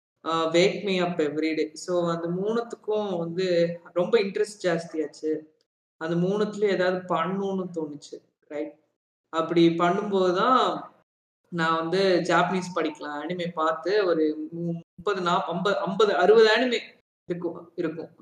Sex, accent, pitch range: female, native, 160-185 Hz